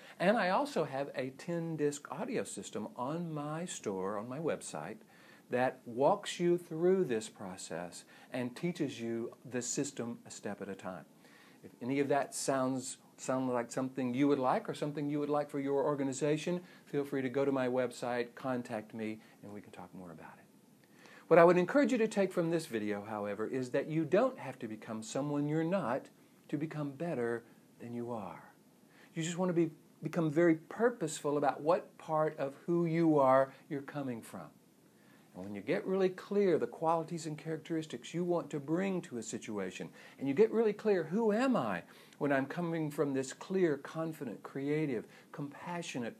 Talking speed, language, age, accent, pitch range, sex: 185 wpm, English, 50-69, American, 120-170 Hz, male